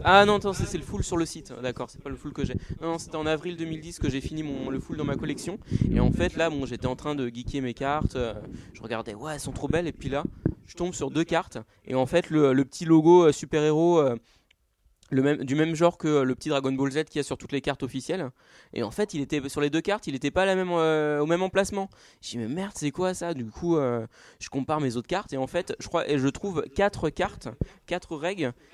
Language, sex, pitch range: French, male, 130-165 Hz